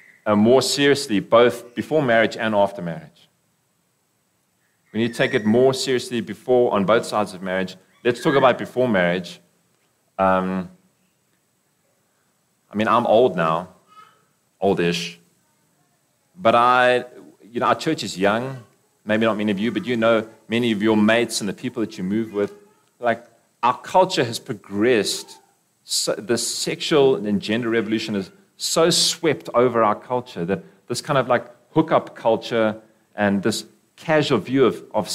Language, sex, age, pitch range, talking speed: English, male, 30-49, 105-130 Hz, 155 wpm